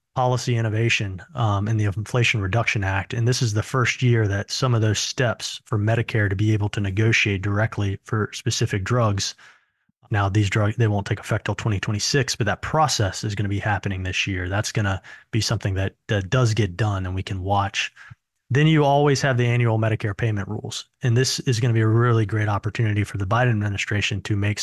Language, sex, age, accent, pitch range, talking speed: English, male, 30-49, American, 105-125 Hz, 215 wpm